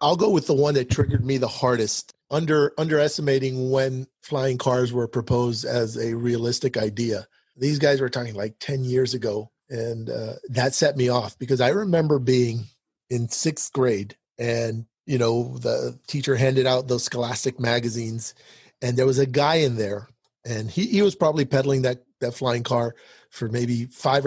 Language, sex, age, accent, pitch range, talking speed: English, male, 40-59, American, 120-140 Hz, 180 wpm